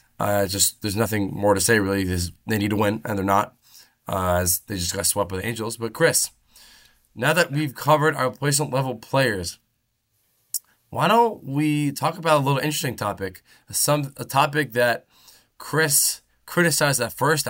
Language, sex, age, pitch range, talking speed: English, male, 20-39, 110-145 Hz, 170 wpm